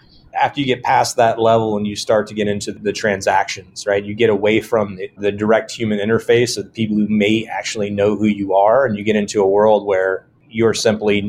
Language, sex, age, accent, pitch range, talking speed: English, male, 30-49, American, 100-115 Hz, 230 wpm